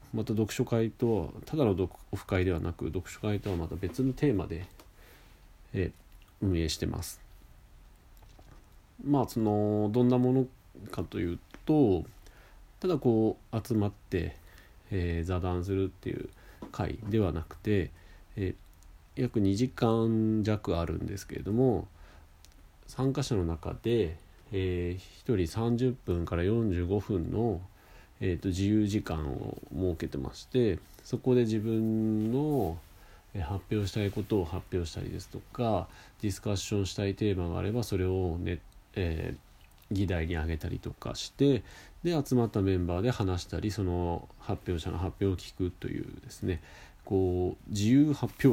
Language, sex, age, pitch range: Japanese, male, 40-59, 85-115 Hz